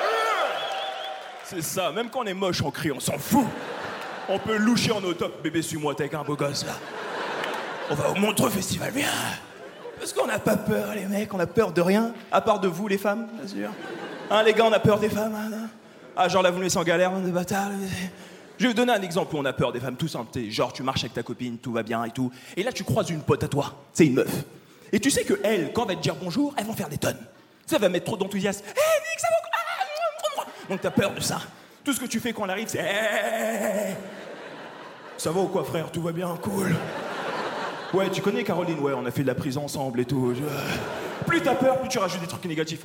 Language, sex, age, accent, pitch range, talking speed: French, male, 20-39, French, 160-225 Hz, 255 wpm